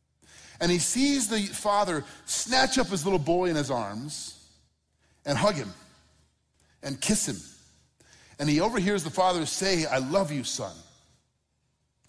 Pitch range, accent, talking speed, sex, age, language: 105-175 Hz, American, 150 wpm, male, 40-59, English